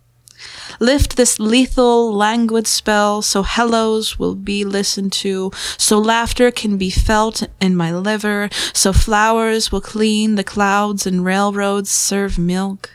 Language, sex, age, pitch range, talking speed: English, female, 20-39, 185-220 Hz, 135 wpm